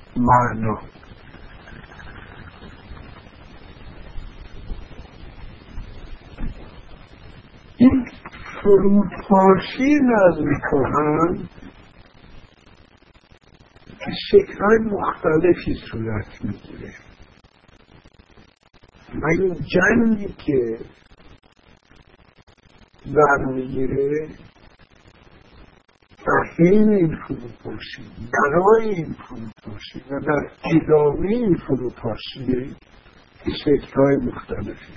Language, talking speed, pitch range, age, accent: English, 45 wpm, 120-195 Hz, 50-69, American